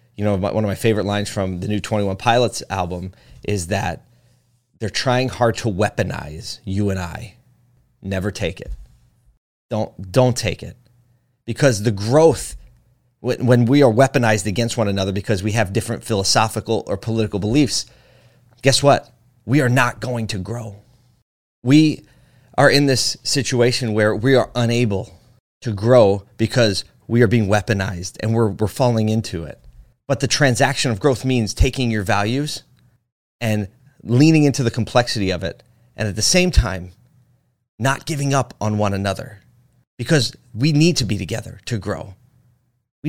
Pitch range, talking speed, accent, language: 100-125 Hz, 160 wpm, American, English